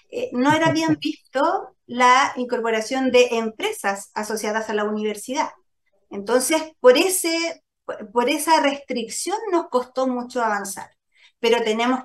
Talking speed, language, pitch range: 125 wpm, Spanish, 220-290 Hz